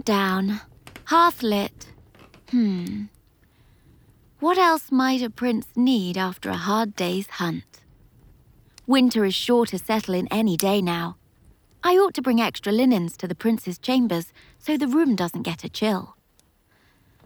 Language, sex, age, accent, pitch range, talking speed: English, female, 30-49, British, 180-235 Hz, 140 wpm